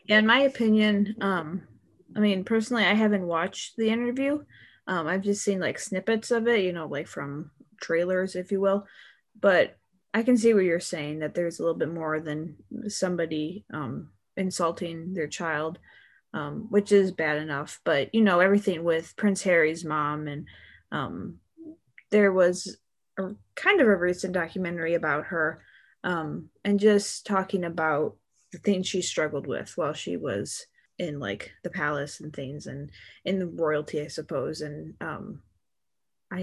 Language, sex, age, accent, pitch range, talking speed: English, female, 20-39, American, 155-200 Hz, 160 wpm